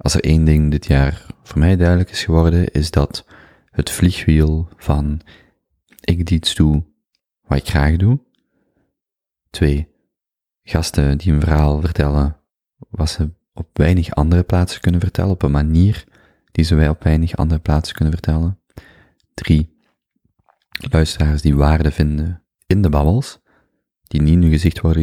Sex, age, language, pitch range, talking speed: male, 30-49, Dutch, 75-90 Hz, 155 wpm